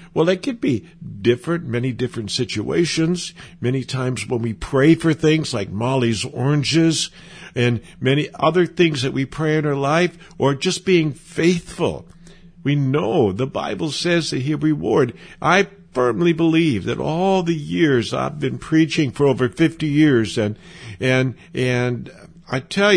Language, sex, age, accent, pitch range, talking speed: English, male, 60-79, American, 125-170 Hz, 155 wpm